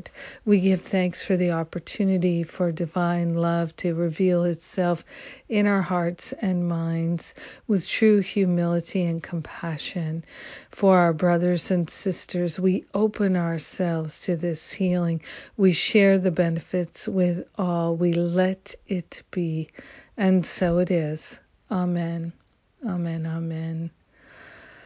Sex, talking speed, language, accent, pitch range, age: female, 120 wpm, English, American, 170-195 Hz, 60-79